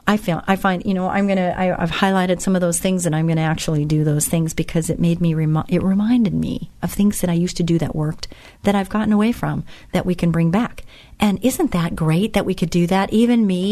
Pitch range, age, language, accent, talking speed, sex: 165-195 Hz, 40-59, English, American, 260 wpm, female